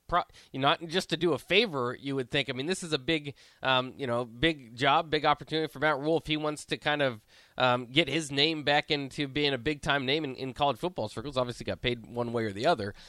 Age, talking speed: 20-39, 260 wpm